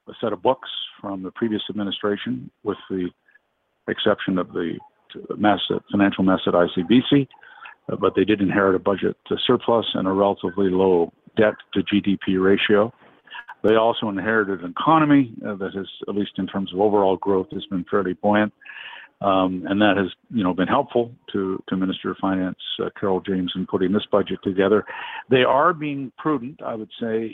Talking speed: 165 wpm